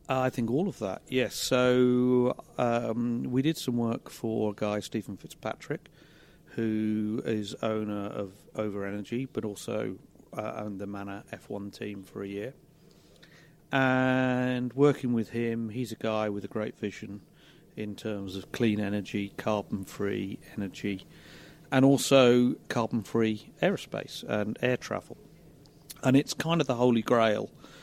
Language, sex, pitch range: English, male, 105-130 Hz